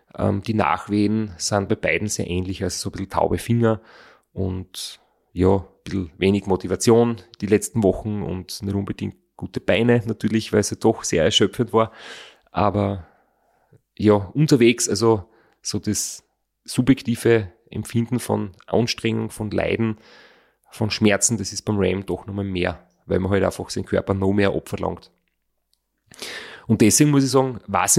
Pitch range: 100-115 Hz